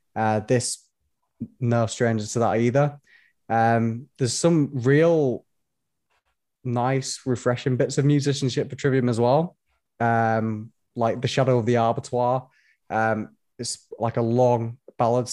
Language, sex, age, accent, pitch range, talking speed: English, male, 20-39, British, 115-135 Hz, 130 wpm